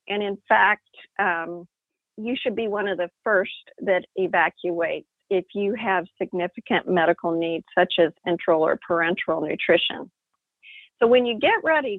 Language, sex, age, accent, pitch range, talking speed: English, female, 50-69, American, 185-235 Hz, 150 wpm